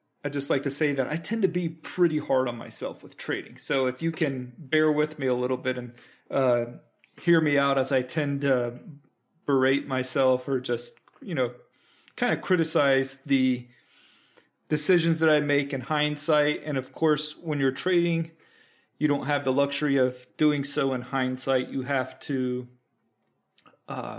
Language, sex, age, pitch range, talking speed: English, male, 30-49, 130-160 Hz, 175 wpm